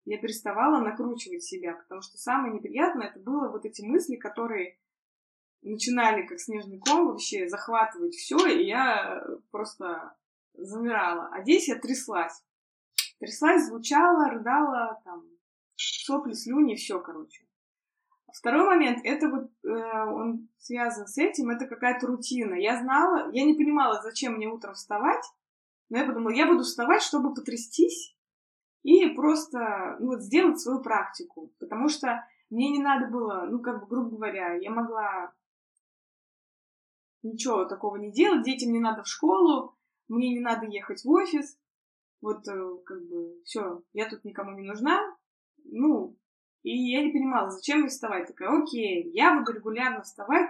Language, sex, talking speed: Russian, female, 150 wpm